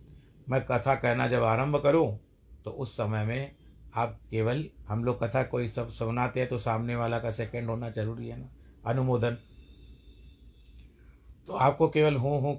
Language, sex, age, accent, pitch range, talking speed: Hindi, male, 50-69, native, 80-125 Hz, 160 wpm